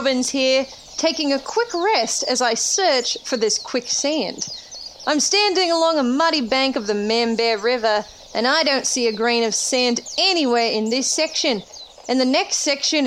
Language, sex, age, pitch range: English, female, 30-49, 240-325 Hz